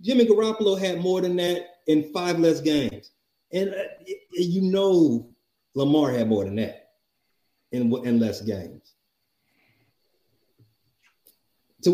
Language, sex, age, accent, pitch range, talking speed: English, male, 30-49, American, 125-170 Hz, 120 wpm